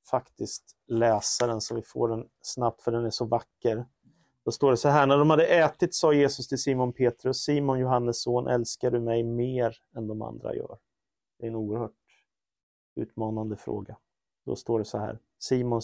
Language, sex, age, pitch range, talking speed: Swedish, male, 30-49, 110-125 Hz, 185 wpm